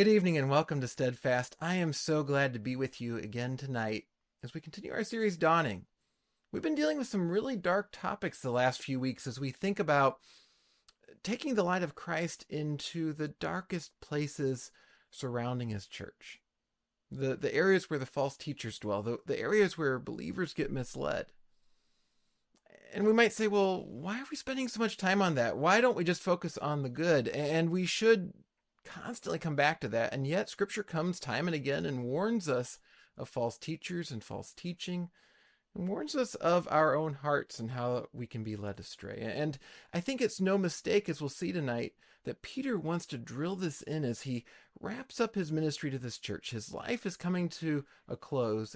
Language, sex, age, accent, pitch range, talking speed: English, male, 30-49, American, 130-185 Hz, 195 wpm